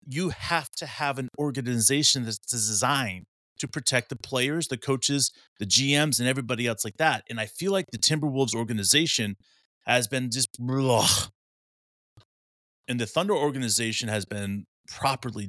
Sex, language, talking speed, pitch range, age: male, English, 145 wpm, 110-135 Hz, 30-49